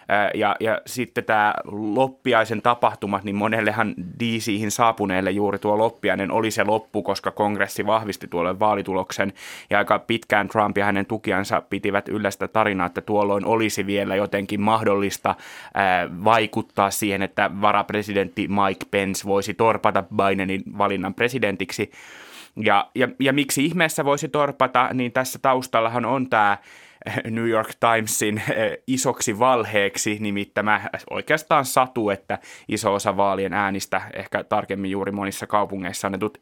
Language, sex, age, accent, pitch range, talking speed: Finnish, male, 20-39, native, 100-115 Hz, 135 wpm